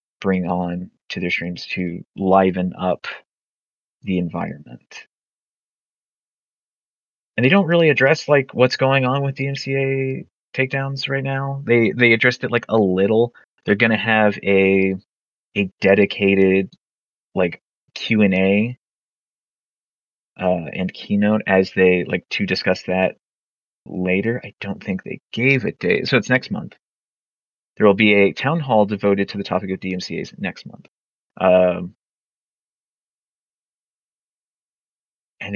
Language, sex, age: English, male, 30-49